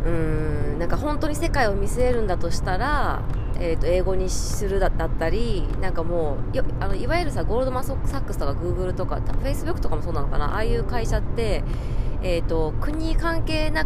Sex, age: female, 20-39